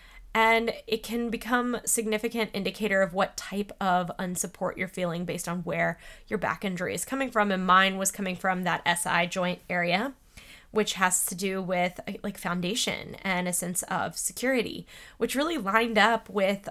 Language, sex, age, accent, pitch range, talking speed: English, female, 20-39, American, 180-220 Hz, 170 wpm